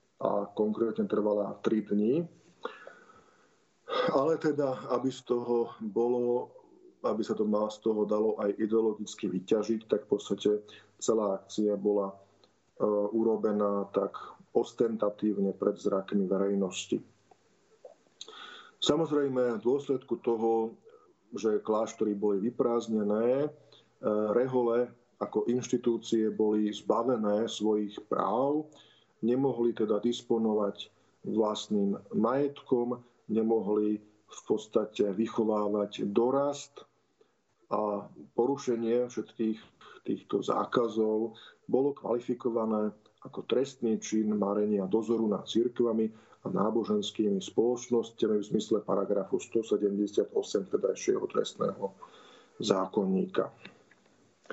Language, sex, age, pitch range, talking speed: Slovak, male, 40-59, 105-125 Hz, 90 wpm